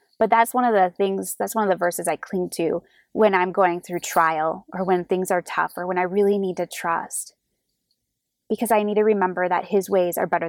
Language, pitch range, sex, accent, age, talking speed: English, 185-240 Hz, female, American, 20-39, 235 wpm